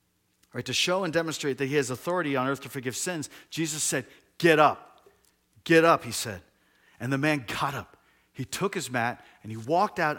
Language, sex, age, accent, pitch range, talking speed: English, male, 40-59, American, 120-165 Hz, 200 wpm